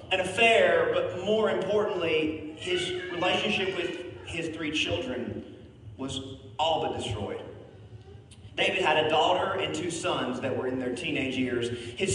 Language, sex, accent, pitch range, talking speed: English, male, American, 120-195 Hz, 145 wpm